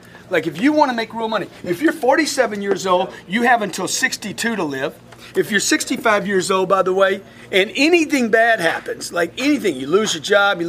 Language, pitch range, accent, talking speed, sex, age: English, 175-250 Hz, American, 215 wpm, male, 40-59